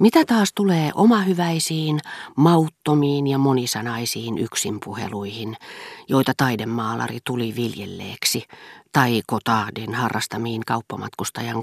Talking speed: 85 wpm